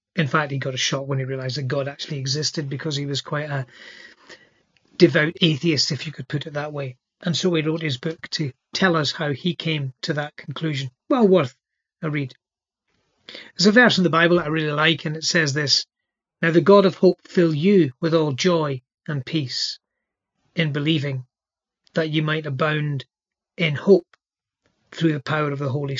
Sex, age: male, 40-59